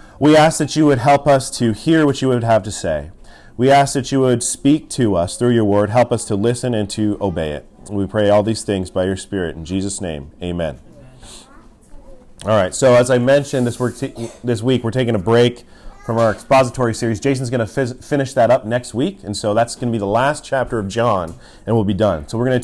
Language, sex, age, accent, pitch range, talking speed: English, male, 30-49, American, 105-130 Hz, 235 wpm